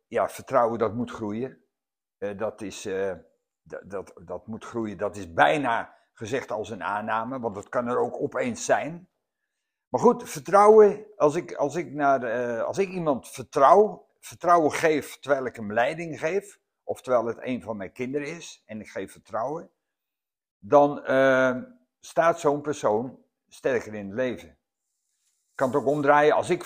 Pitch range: 115-170 Hz